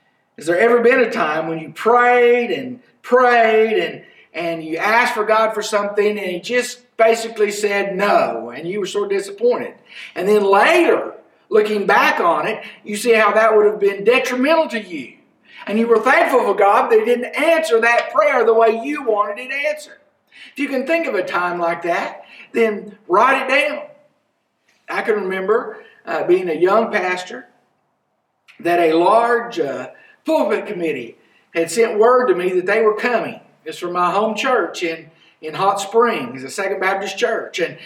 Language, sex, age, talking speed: English, male, 50-69, 180 wpm